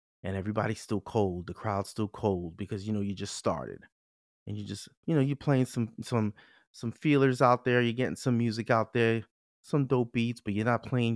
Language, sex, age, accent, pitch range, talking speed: English, male, 30-49, American, 105-130 Hz, 215 wpm